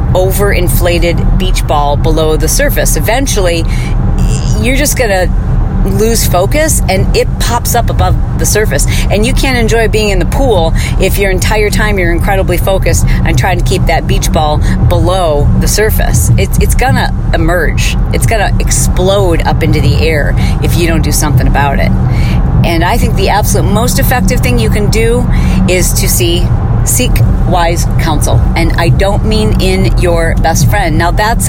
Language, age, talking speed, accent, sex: English, 40-59, 170 wpm, American, female